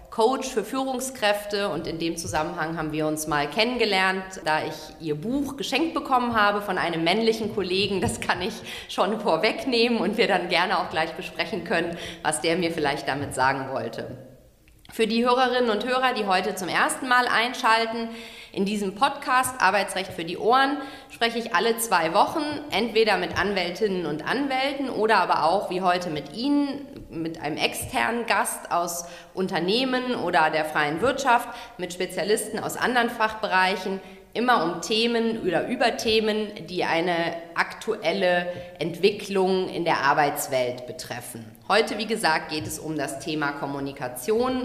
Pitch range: 160-230 Hz